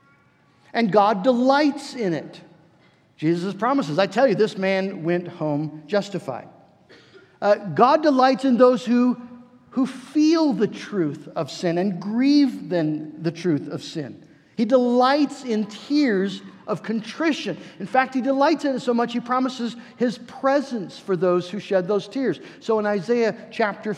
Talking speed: 155 wpm